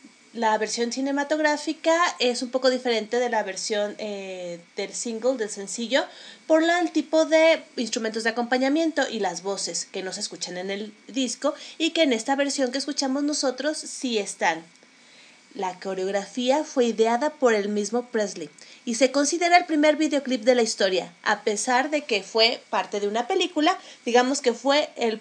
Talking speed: 170 wpm